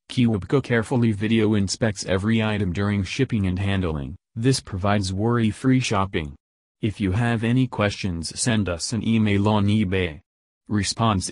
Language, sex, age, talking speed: English, male, 30-49, 140 wpm